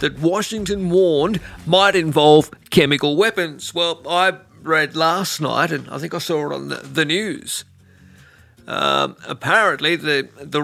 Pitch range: 150-190 Hz